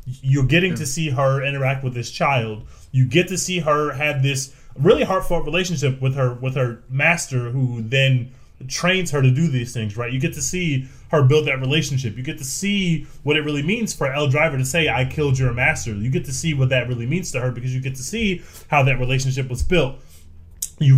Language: English